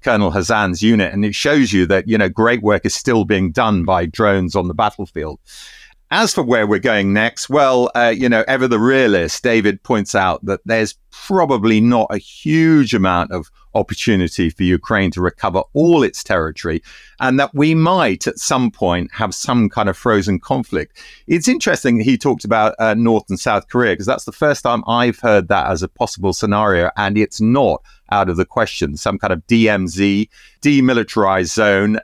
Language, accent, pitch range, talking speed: English, British, 95-120 Hz, 190 wpm